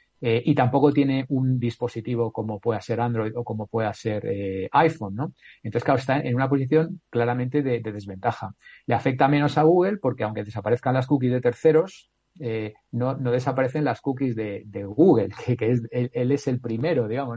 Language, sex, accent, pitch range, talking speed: Spanish, male, Spanish, 115-135 Hz, 195 wpm